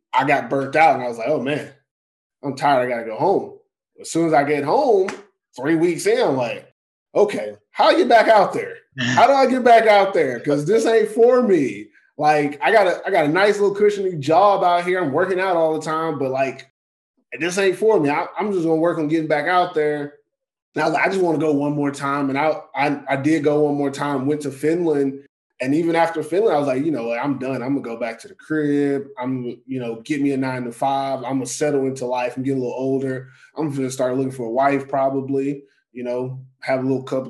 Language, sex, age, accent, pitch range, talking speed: English, male, 20-39, American, 130-160 Hz, 250 wpm